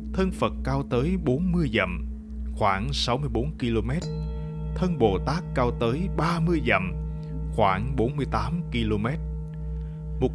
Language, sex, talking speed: Vietnamese, male, 145 wpm